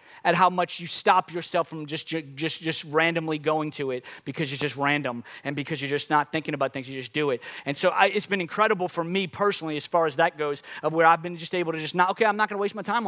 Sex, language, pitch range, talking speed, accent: male, English, 145-185 Hz, 275 wpm, American